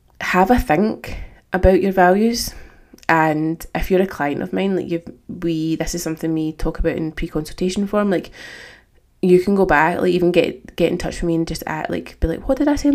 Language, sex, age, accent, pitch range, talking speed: English, female, 20-39, British, 155-180 Hz, 225 wpm